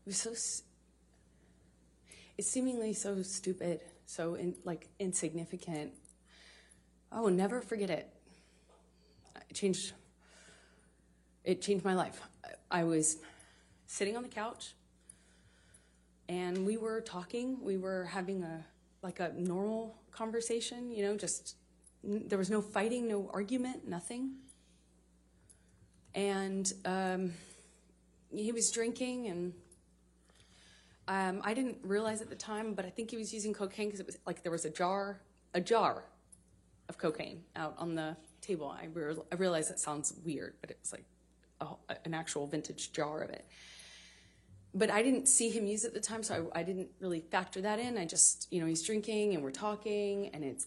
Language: English